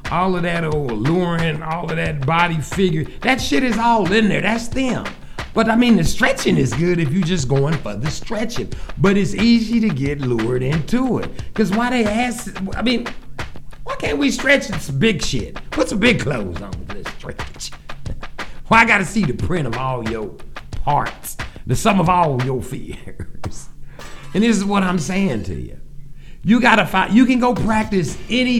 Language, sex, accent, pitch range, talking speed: English, male, American, 140-230 Hz, 195 wpm